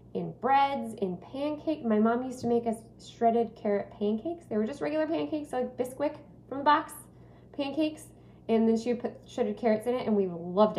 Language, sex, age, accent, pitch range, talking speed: English, female, 20-39, American, 205-255 Hz, 200 wpm